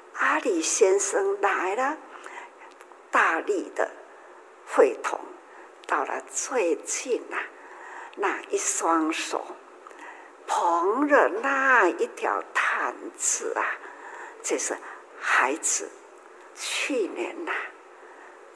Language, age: Chinese, 60-79